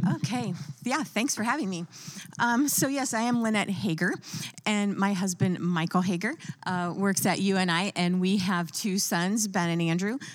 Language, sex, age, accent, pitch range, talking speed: English, female, 30-49, American, 170-210 Hz, 175 wpm